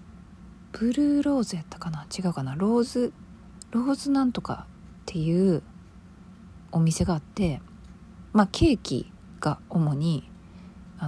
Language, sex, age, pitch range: Japanese, female, 40-59, 155-205 Hz